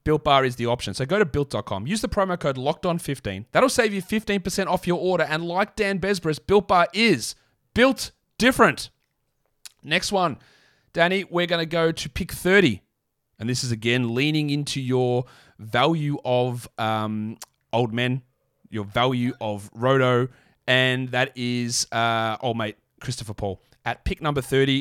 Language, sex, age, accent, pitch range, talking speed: English, male, 30-49, Australian, 115-160 Hz, 170 wpm